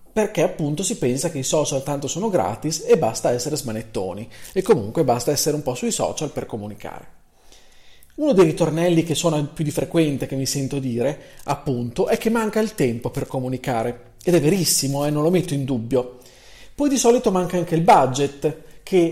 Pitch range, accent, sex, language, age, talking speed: 135-200 Hz, native, male, Italian, 40-59, 190 wpm